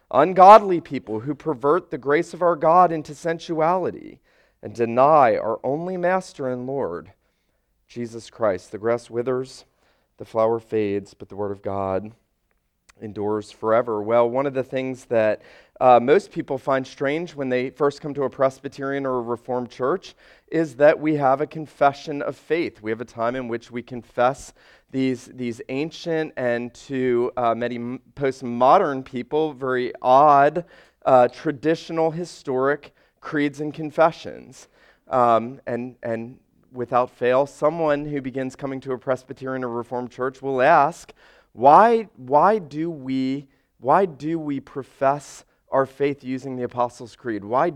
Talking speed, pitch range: 150 wpm, 120-150 Hz